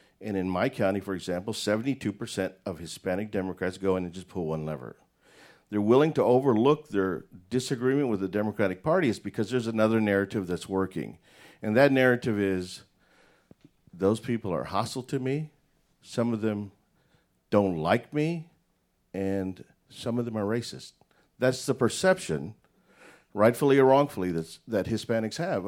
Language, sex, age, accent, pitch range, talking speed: English, male, 50-69, American, 90-115 Hz, 155 wpm